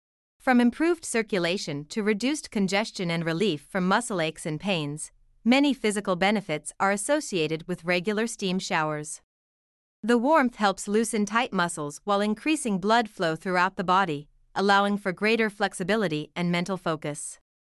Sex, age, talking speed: female, 30-49, 140 wpm